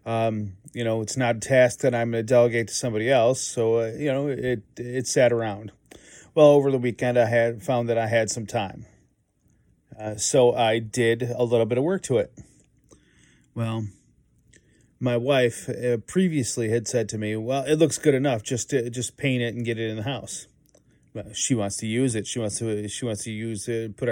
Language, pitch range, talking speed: English, 110-130 Hz, 215 wpm